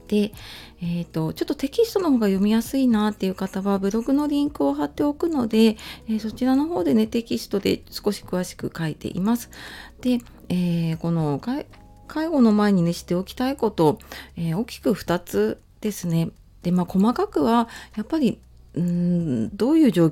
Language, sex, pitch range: Japanese, female, 155-235 Hz